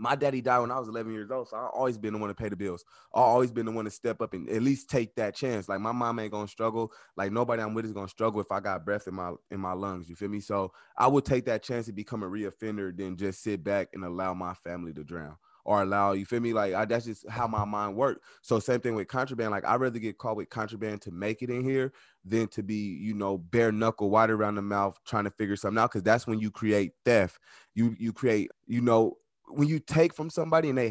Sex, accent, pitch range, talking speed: male, American, 105-130 Hz, 280 wpm